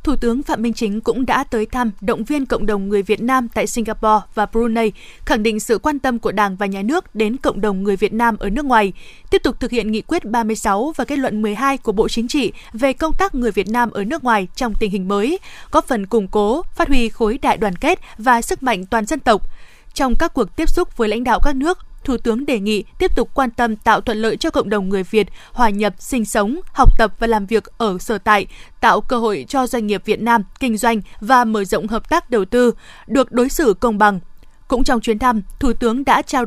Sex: female